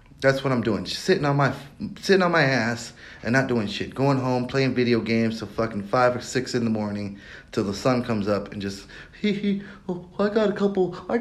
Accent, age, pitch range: American, 30-49, 105-145 Hz